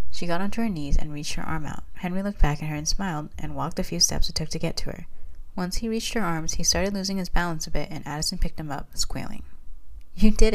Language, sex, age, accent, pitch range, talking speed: English, female, 20-39, American, 130-175 Hz, 275 wpm